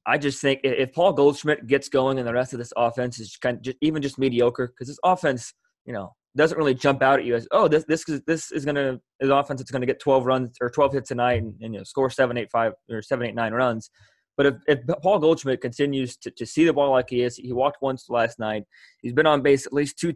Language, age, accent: English, 20-39, American